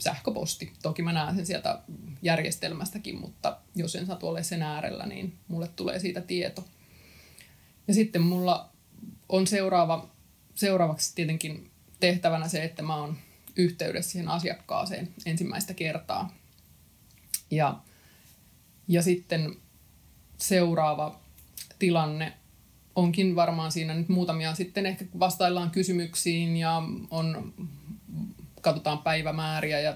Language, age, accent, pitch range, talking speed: Finnish, 20-39, native, 160-185 Hz, 110 wpm